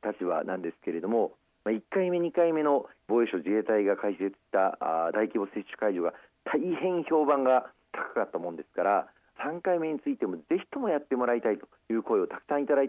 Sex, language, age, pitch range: male, Japanese, 40-59, 110-180 Hz